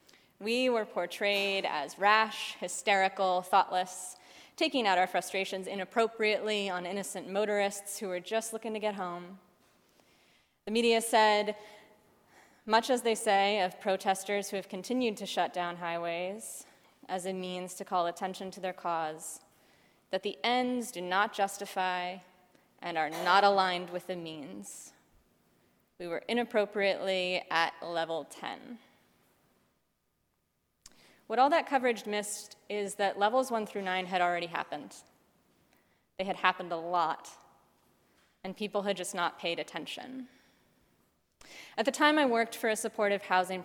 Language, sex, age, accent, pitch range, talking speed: English, female, 20-39, American, 180-210 Hz, 140 wpm